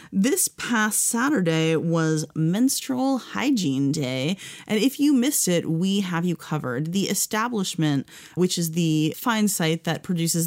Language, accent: English, American